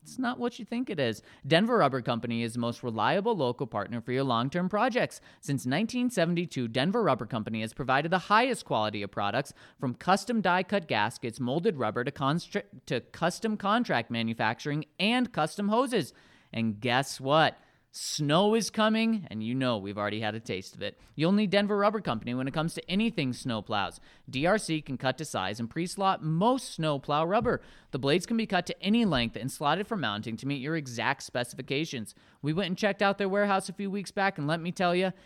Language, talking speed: English, 200 wpm